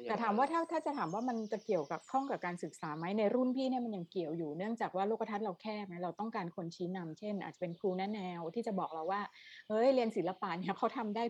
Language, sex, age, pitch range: Thai, female, 30-49, 170-215 Hz